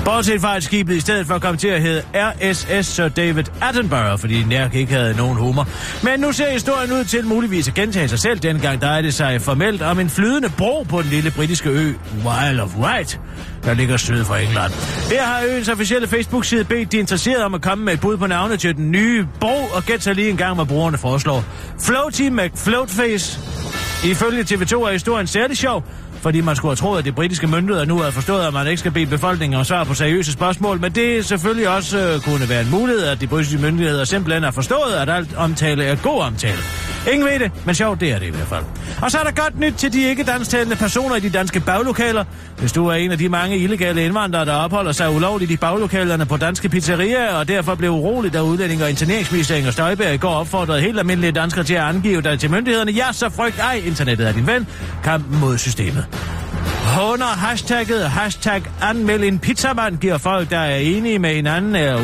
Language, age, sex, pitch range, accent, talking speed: Danish, 40-59, male, 145-215 Hz, native, 220 wpm